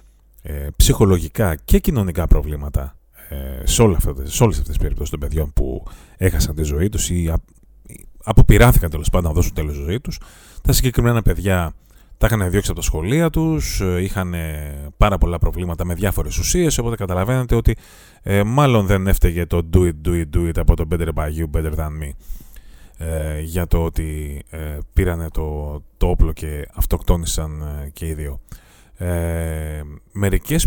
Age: 30-49